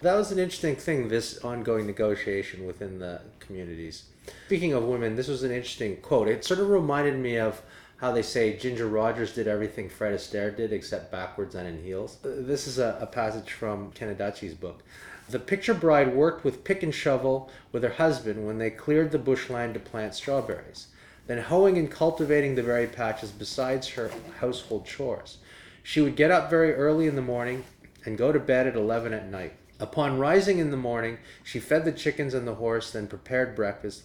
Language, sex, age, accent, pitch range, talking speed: English, male, 30-49, American, 110-150 Hz, 190 wpm